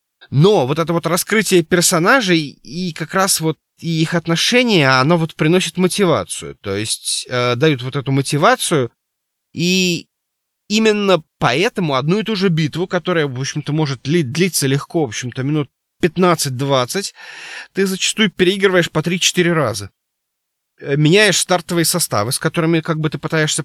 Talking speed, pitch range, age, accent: 145 wpm, 140-180 Hz, 20-39, native